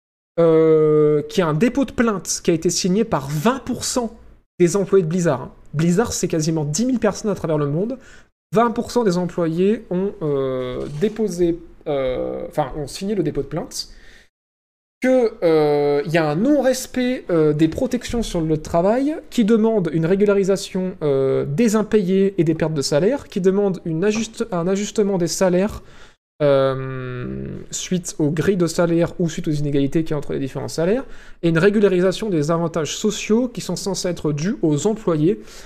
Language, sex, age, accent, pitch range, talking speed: French, male, 20-39, French, 160-225 Hz, 175 wpm